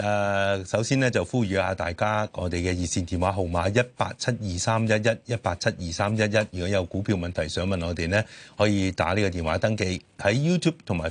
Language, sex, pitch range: Chinese, male, 90-115 Hz